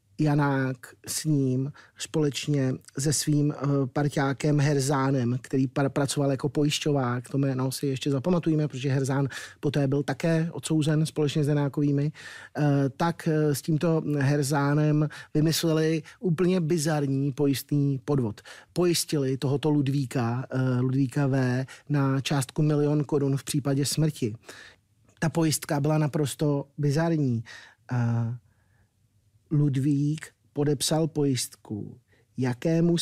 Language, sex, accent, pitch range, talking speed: Czech, male, native, 130-155 Hz, 105 wpm